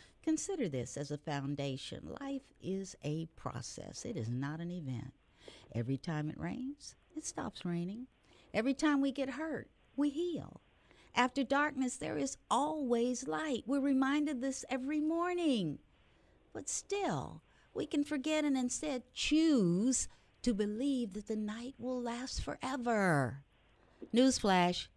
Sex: female